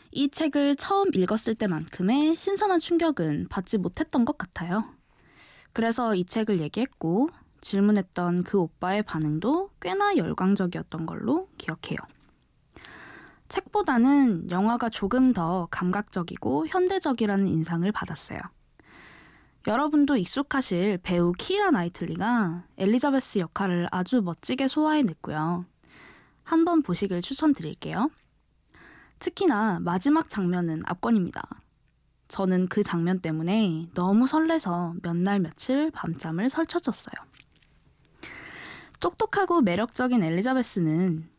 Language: Korean